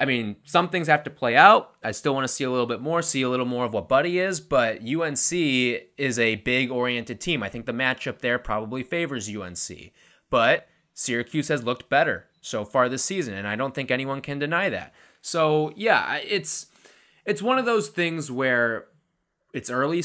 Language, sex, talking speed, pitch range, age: English, male, 205 wpm, 110-150 Hz, 20-39